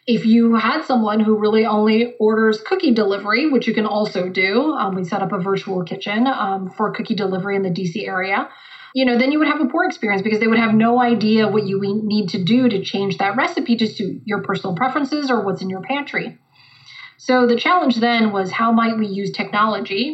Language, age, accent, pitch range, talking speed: English, 30-49, American, 210-260 Hz, 220 wpm